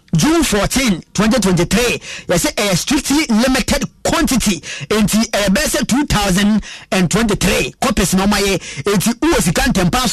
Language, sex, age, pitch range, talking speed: English, male, 30-49, 185-235 Hz, 155 wpm